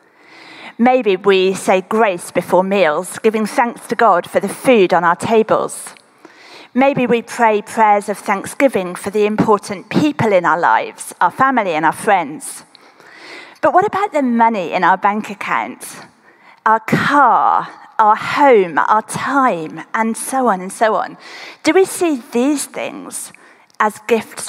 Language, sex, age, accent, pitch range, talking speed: English, female, 40-59, British, 200-250 Hz, 150 wpm